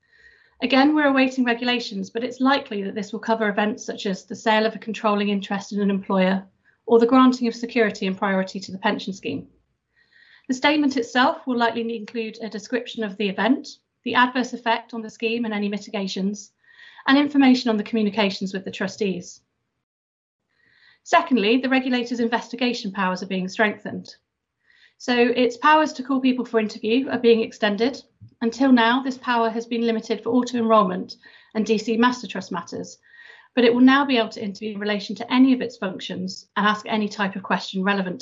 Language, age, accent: English, 40-59, British